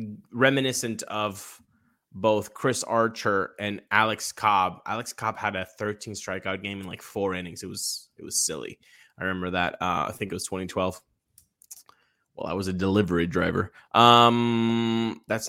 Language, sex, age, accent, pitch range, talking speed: English, male, 20-39, American, 100-125 Hz, 160 wpm